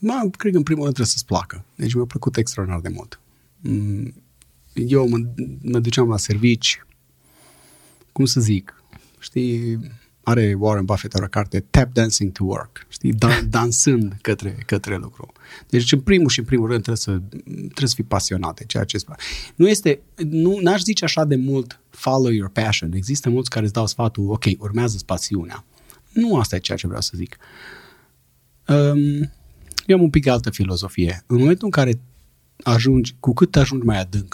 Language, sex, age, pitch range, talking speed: Romanian, male, 30-49, 95-135 Hz, 180 wpm